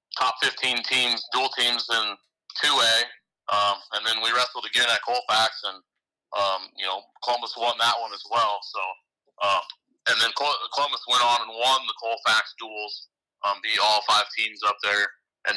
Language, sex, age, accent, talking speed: English, male, 30-49, American, 175 wpm